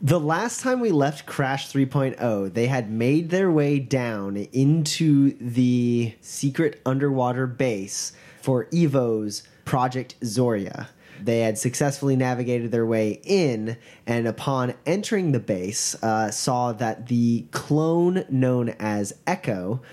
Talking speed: 125 wpm